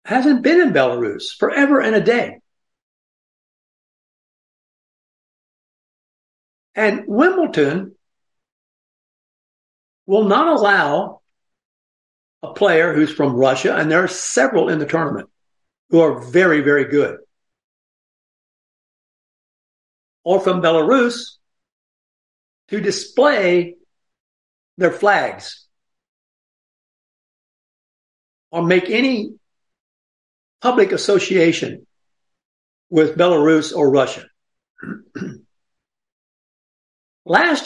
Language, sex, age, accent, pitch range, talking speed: English, male, 60-79, American, 160-245 Hz, 75 wpm